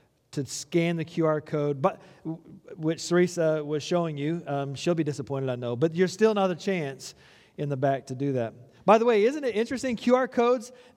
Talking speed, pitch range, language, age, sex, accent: 205 wpm, 165-220 Hz, English, 40-59, male, American